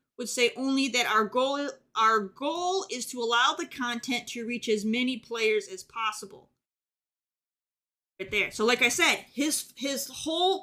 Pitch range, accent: 220-270 Hz, American